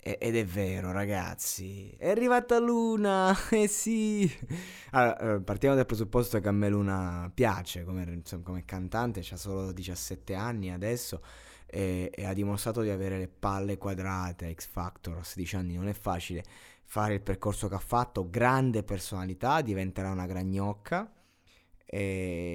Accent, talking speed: native, 140 wpm